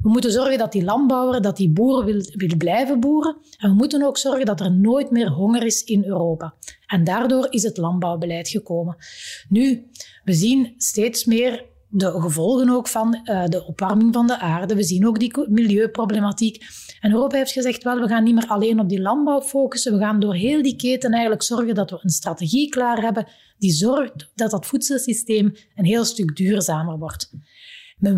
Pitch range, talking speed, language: 185-240 Hz, 190 wpm, Dutch